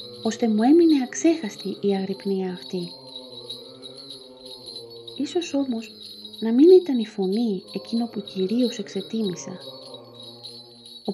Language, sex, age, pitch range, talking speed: Greek, female, 30-49, 135-225 Hz, 100 wpm